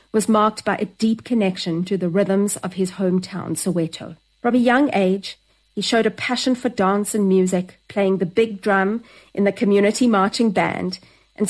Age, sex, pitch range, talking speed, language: 40-59, female, 185-225 Hz, 185 wpm, English